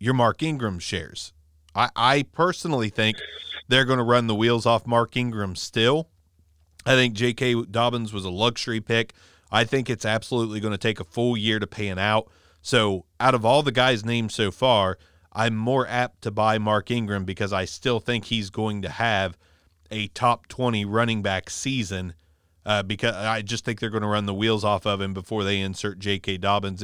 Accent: American